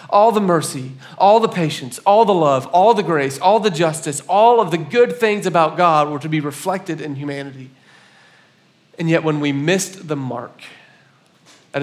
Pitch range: 140-170 Hz